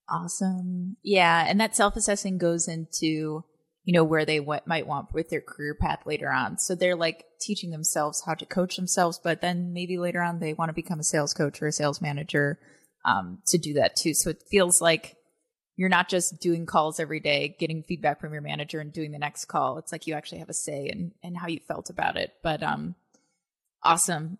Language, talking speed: English, 220 wpm